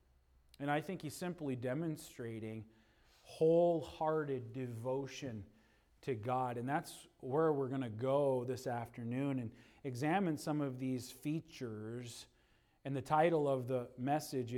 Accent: American